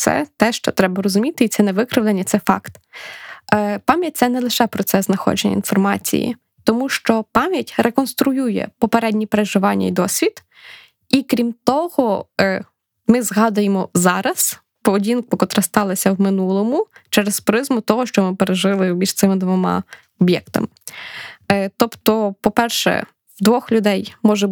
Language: Ukrainian